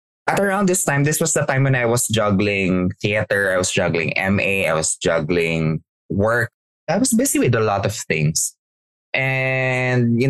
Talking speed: 180 wpm